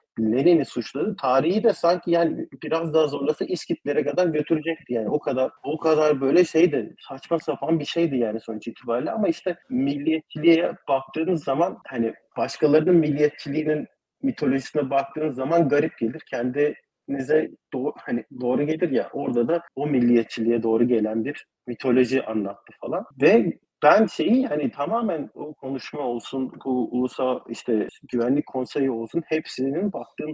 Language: Turkish